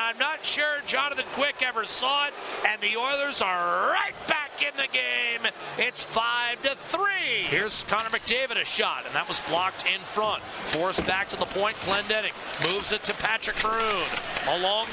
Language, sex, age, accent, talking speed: English, male, 40-59, American, 155 wpm